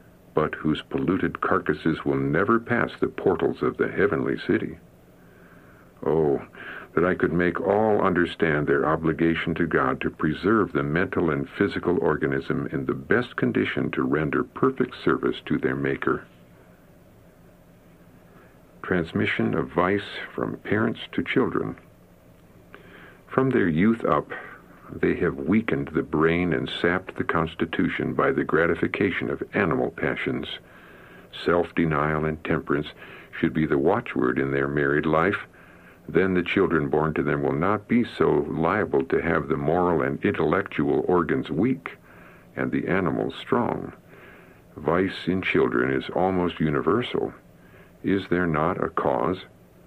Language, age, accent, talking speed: English, 60-79, American, 135 wpm